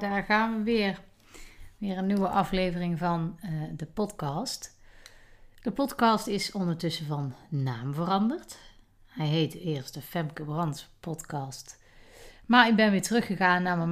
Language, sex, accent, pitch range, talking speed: Dutch, female, Dutch, 160-210 Hz, 140 wpm